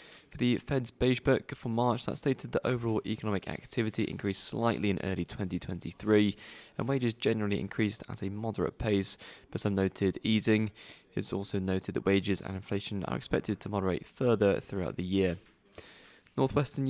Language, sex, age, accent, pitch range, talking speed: English, male, 20-39, British, 95-115 Hz, 165 wpm